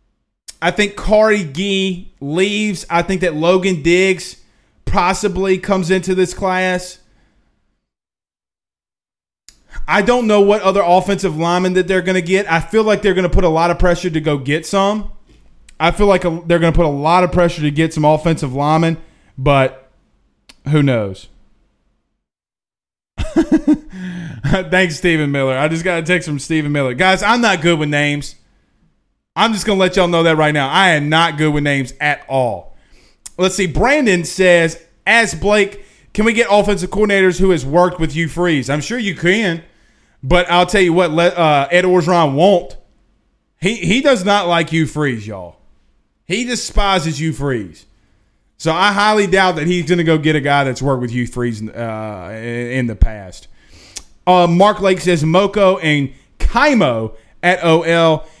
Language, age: English, 20-39